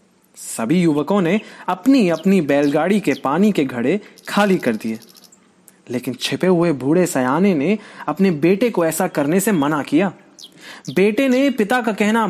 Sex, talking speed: male, 160 wpm